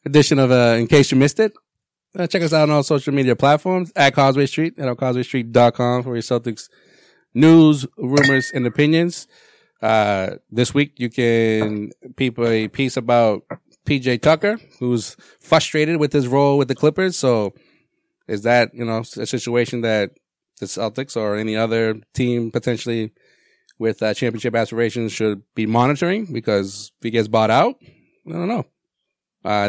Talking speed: 160 wpm